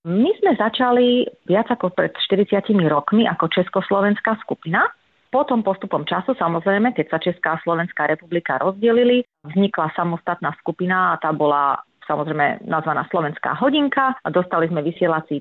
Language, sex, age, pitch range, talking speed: Slovak, female, 30-49, 165-215 Hz, 140 wpm